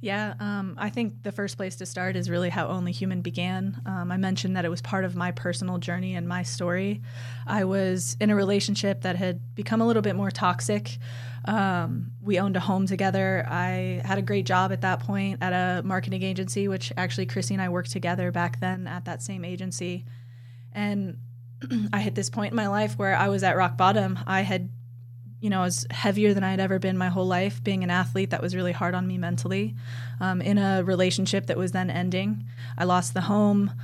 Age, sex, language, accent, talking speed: 20-39, female, English, American, 220 wpm